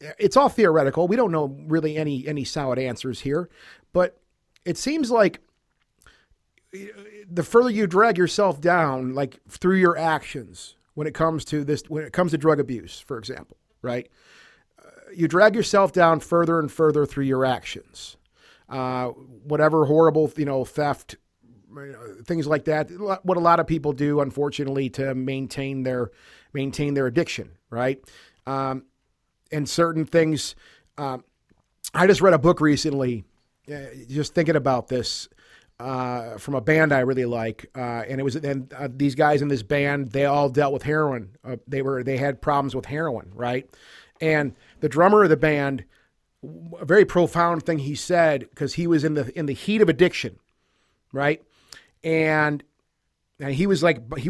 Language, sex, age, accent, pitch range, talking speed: English, male, 40-59, American, 130-165 Hz, 165 wpm